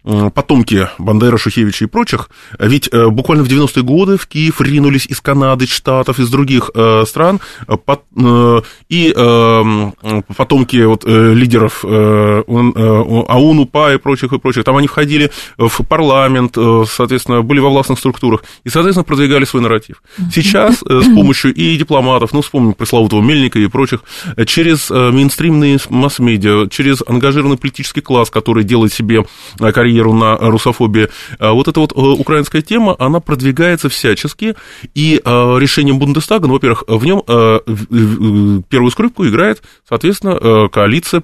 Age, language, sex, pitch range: 20-39, Russian, male, 115-145 Hz